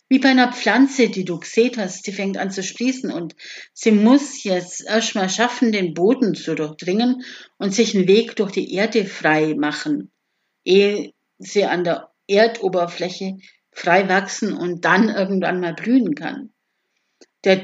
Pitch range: 185-245 Hz